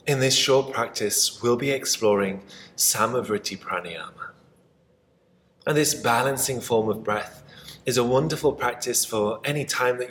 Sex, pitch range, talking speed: male, 110-135 Hz, 135 wpm